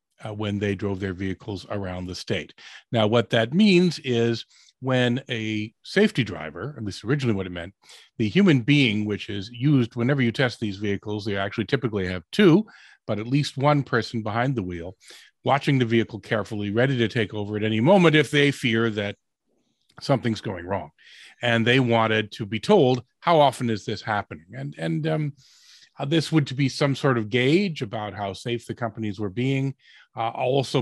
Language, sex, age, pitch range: English, male, 40-59, 105-135 Hz